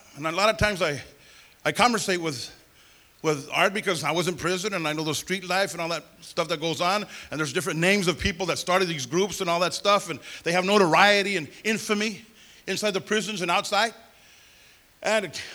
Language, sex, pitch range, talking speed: English, male, 175-235 Hz, 210 wpm